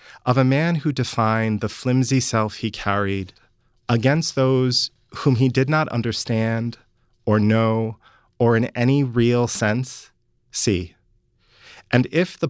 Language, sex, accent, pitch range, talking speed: English, male, American, 110-130 Hz, 135 wpm